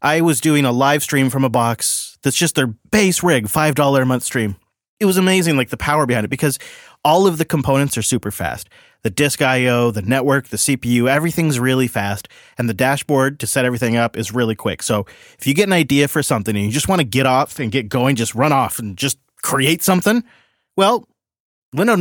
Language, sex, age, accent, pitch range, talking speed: English, male, 30-49, American, 115-155 Hz, 220 wpm